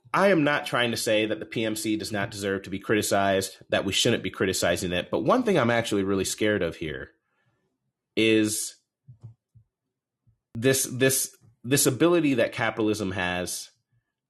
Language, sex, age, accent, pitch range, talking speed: English, male, 30-49, American, 100-130 Hz, 160 wpm